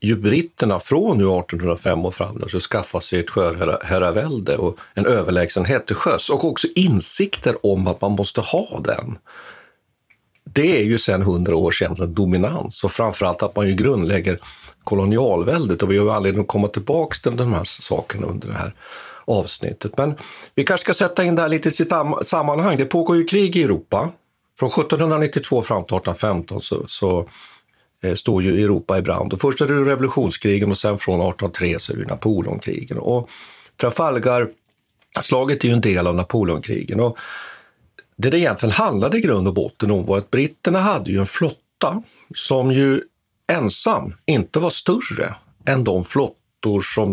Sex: male